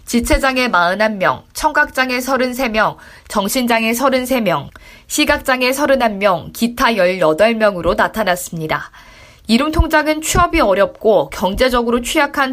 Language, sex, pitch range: Korean, female, 205-270 Hz